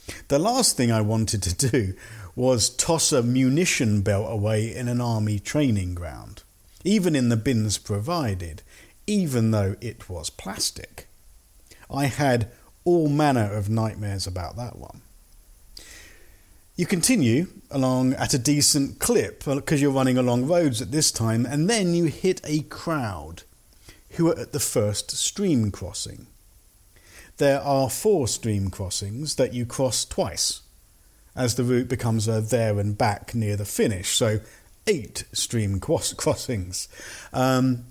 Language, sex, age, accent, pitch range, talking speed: English, male, 50-69, British, 105-145 Hz, 140 wpm